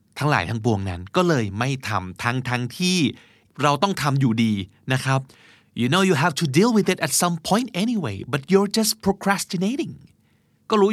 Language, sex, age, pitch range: Thai, male, 20-39, 115-165 Hz